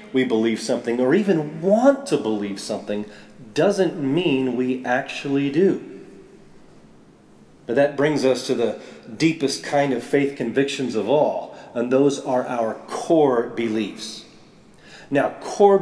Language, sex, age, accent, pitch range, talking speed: English, male, 40-59, American, 130-180 Hz, 135 wpm